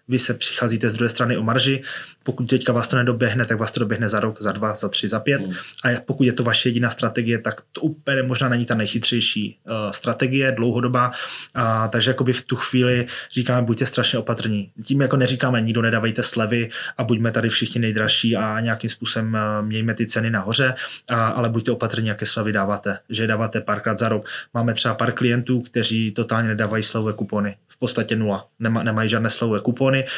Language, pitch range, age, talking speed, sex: Czech, 110-120 Hz, 20-39, 195 wpm, male